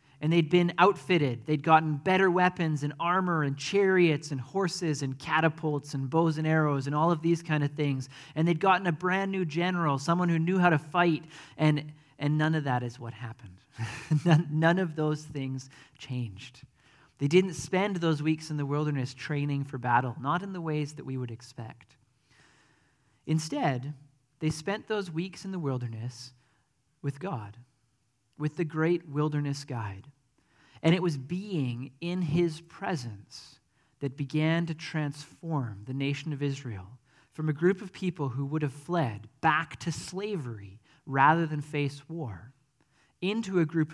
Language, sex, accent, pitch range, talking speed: English, male, American, 130-170 Hz, 165 wpm